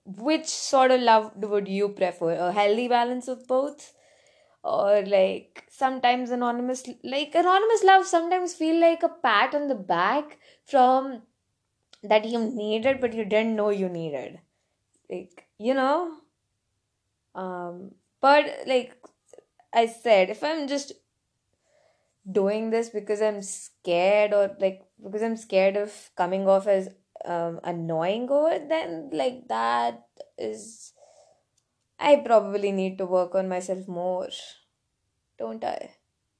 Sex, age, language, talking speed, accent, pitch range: female, 20-39, English, 130 wpm, Indian, 185-265 Hz